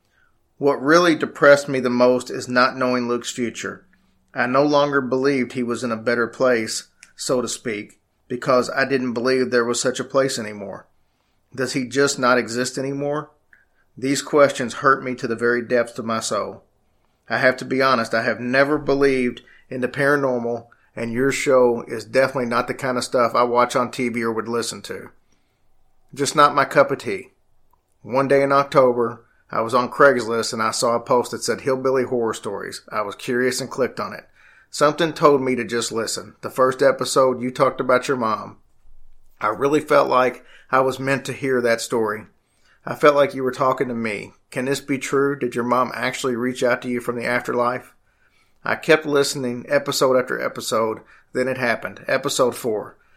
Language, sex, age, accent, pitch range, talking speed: English, male, 40-59, American, 120-135 Hz, 195 wpm